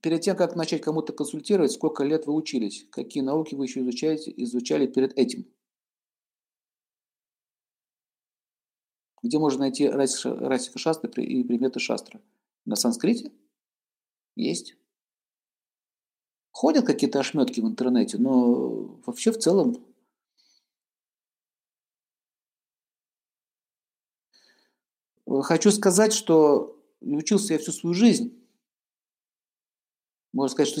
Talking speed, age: 95 wpm, 50-69